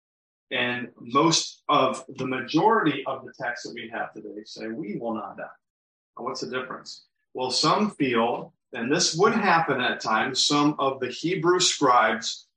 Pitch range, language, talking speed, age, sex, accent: 120-145 Hz, English, 160 wpm, 40-59, male, American